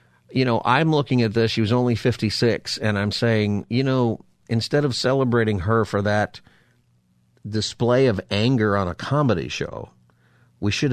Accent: American